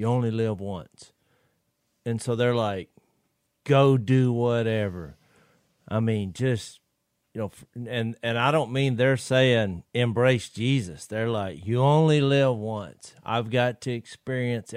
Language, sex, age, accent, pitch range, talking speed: English, male, 40-59, American, 110-140 Hz, 140 wpm